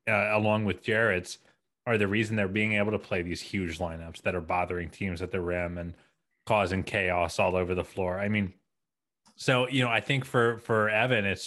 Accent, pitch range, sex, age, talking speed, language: American, 95-115 Hz, male, 30-49, 210 wpm, English